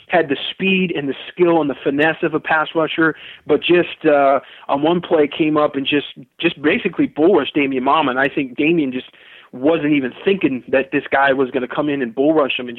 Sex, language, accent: male, English, American